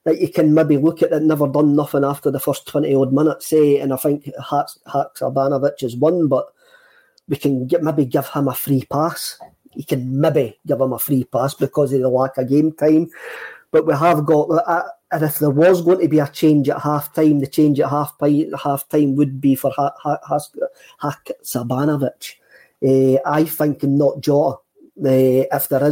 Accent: British